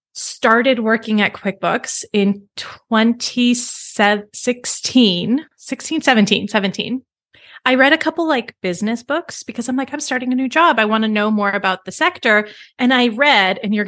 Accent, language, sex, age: American, English, female, 20-39